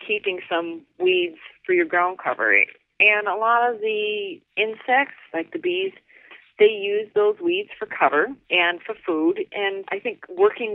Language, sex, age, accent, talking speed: English, female, 40-59, American, 160 wpm